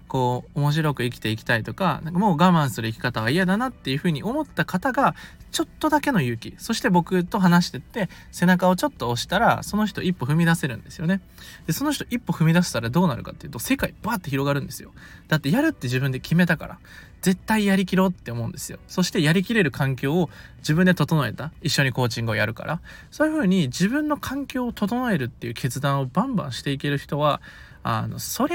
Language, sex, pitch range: Japanese, male, 130-195 Hz